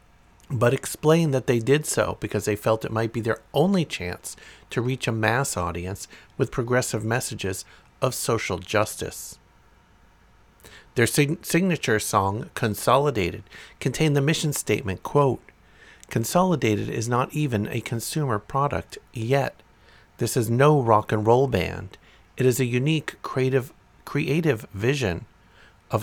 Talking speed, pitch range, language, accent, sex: 135 wpm, 105-135 Hz, English, American, male